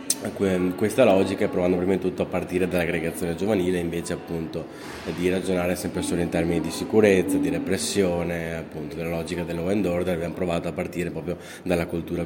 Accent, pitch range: native, 85-95 Hz